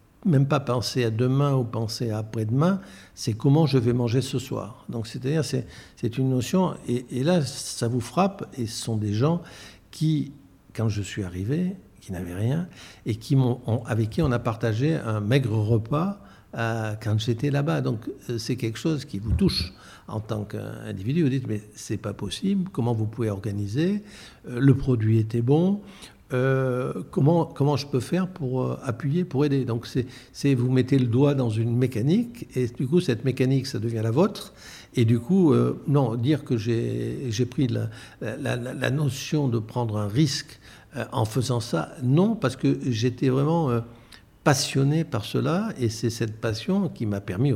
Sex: male